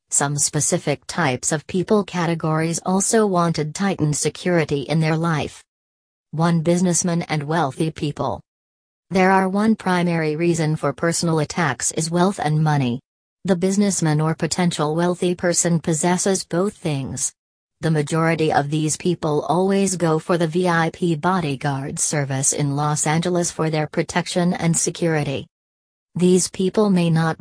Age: 40-59